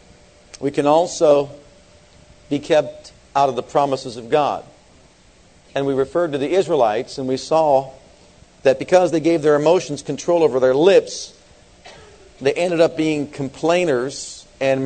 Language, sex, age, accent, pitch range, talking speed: English, male, 50-69, American, 130-165 Hz, 145 wpm